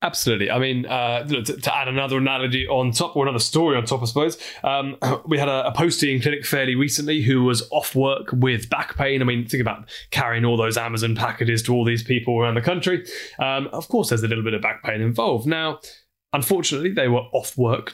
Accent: British